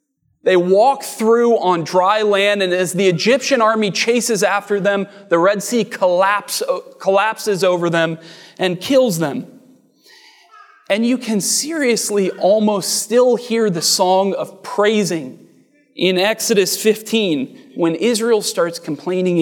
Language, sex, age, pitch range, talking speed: English, male, 30-49, 165-230 Hz, 125 wpm